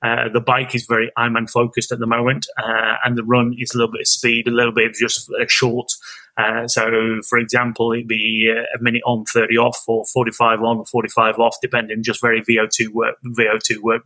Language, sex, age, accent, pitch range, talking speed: English, male, 20-39, British, 115-120 Hz, 215 wpm